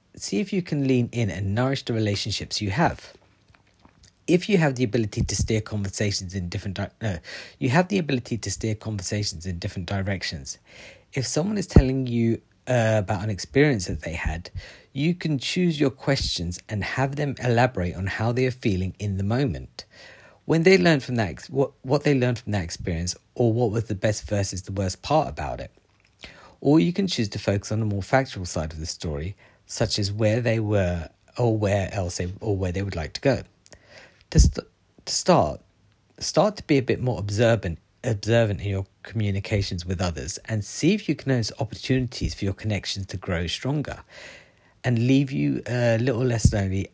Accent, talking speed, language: British, 195 wpm, English